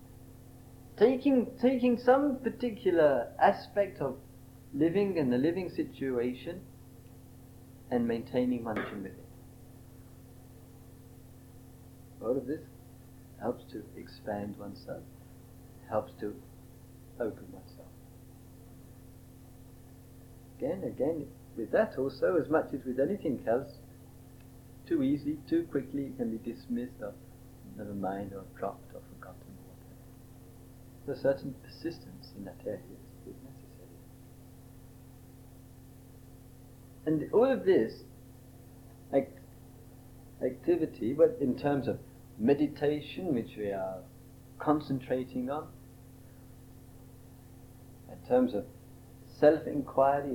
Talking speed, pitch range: 95 wpm, 125-135 Hz